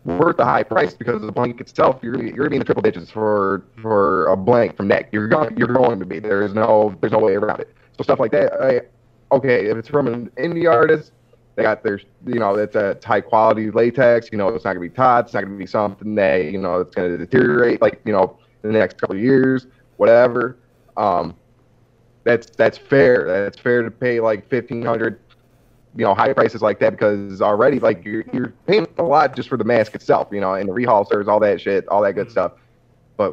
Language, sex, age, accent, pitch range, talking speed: English, male, 30-49, American, 105-125 Hz, 235 wpm